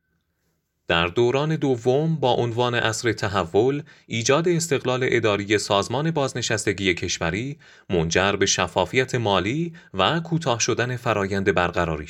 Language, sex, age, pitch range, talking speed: Persian, male, 30-49, 95-130 Hz, 110 wpm